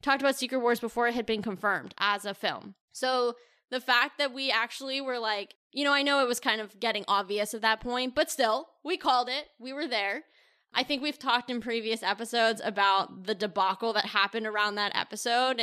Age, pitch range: 10-29, 200-245 Hz